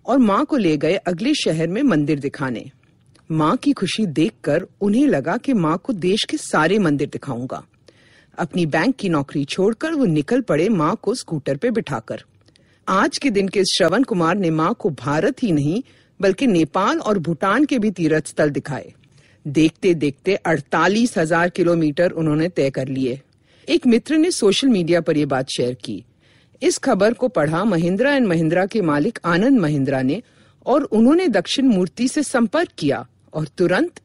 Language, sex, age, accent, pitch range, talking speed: Hindi, female, 50-69, native, 155-250 Hz, 170 wpm